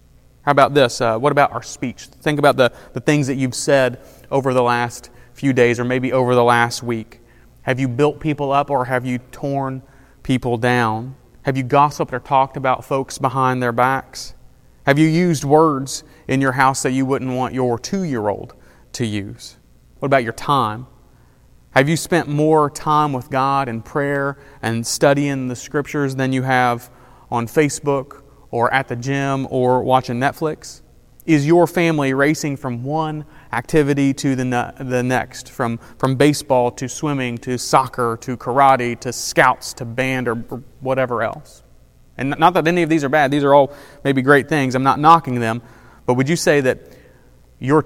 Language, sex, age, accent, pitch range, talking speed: English, male, 30-49, American, 125-140 Hz, 180 wpm